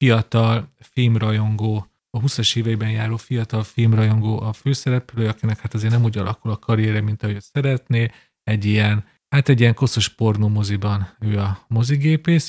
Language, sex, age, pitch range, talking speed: Hungarian, male, 40-59, 110-130 Hz, 150 wpm